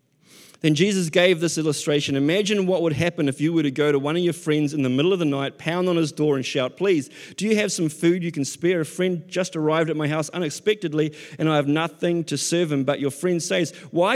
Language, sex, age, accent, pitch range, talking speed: English, male, 30-49, Australian, 160-210 Hz, 255 wpm